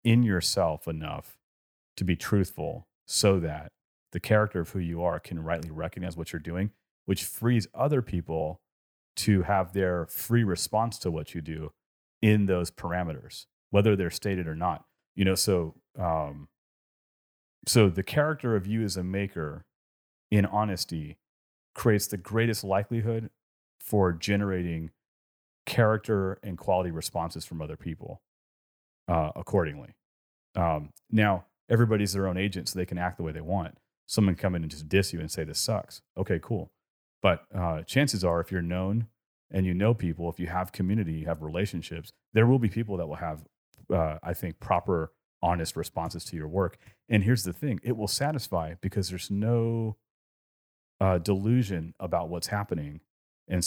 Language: English